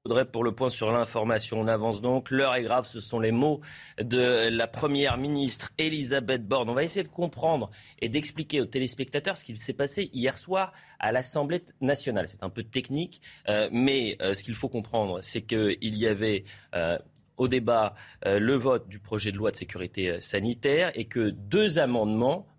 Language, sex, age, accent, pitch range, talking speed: French, male, 30-49, French, 110-155 Hz, 190 wpm